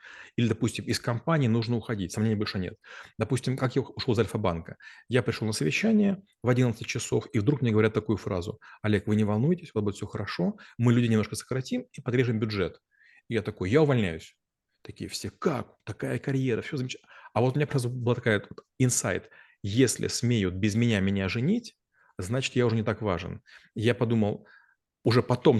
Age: 30-49